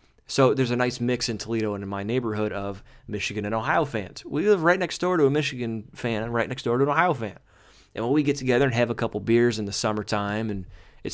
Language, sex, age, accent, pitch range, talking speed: English, male, 30-49, American, 110-130 Hz, 260 wpm